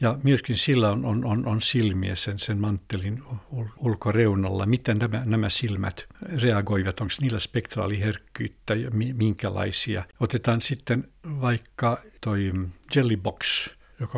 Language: Finnish